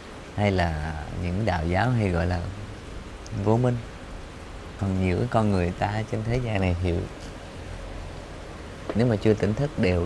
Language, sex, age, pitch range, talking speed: Vietnamese, male, 20-39, 90-115 Hz, 155 wpm